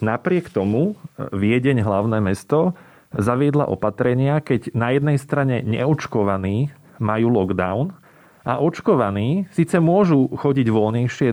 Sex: male